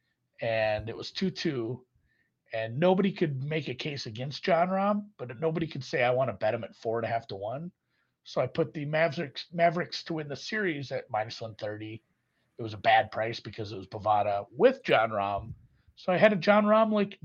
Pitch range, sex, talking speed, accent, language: 115-180 Hz, male, 220 wpm, American, English